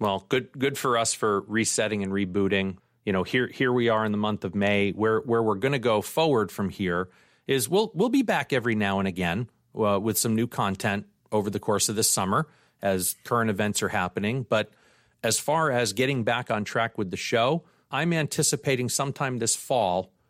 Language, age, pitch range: English, 40-59, 100-125 Hz